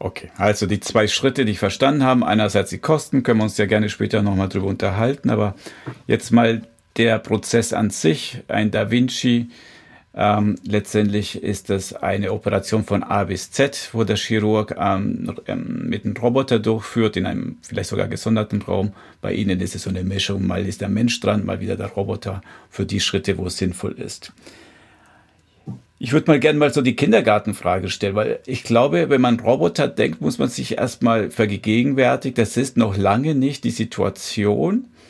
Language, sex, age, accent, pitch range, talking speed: German, male, 50-69, German, 100-115 Hz, 180 wpm